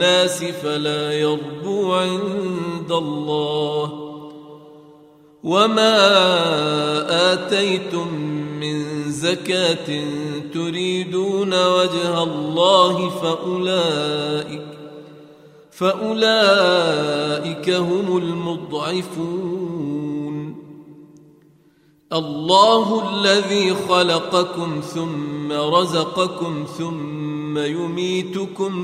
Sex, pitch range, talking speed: male, 150-185 Hz, 45 wpm